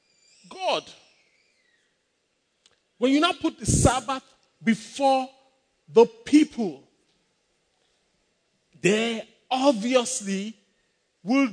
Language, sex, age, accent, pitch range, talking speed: English, male, 50-69, Nigerian, 205-280 Hz, 70 wpm